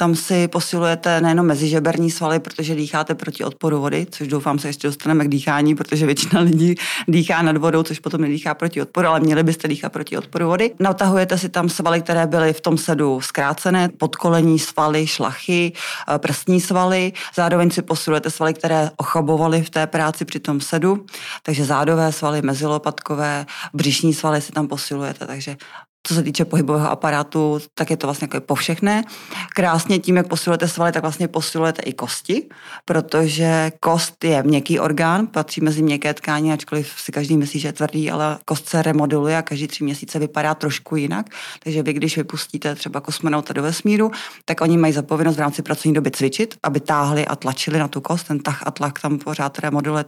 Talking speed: 180 wpm